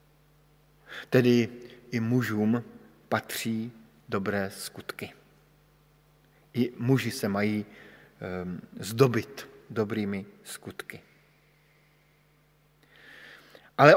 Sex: male